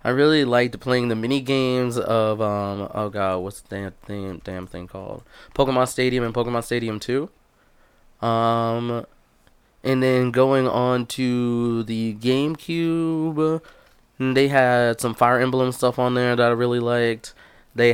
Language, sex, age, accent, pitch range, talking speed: English, male, 20-39, American, 110-130 Hz, 155 wpm